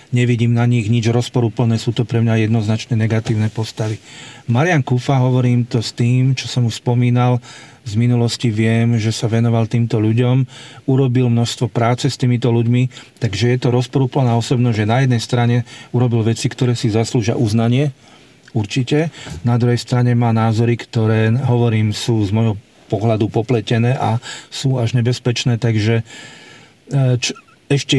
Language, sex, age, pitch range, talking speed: Slovak, male, 40-59, 115-125 Hz, 150 wpm